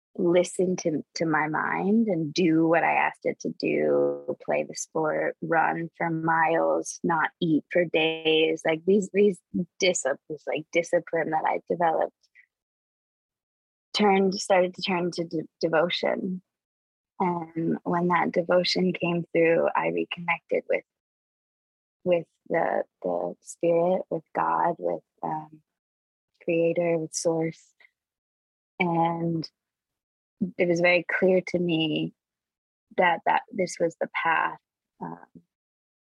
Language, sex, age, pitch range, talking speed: English, female, 20-39, 155-180 Hz, 120 wpm